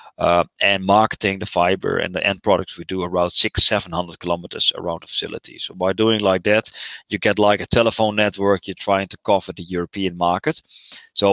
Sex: male